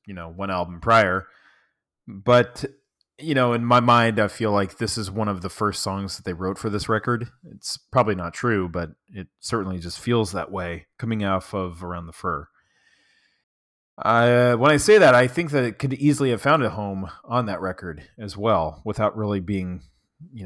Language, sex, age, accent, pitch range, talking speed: English, male, 30-49, American, 95-120 Hz, 195 wpm